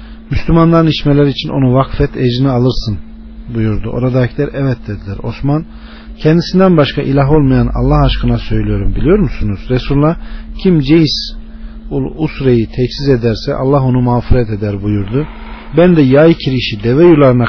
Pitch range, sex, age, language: 110-155 Hz, male, 40-59, Turkish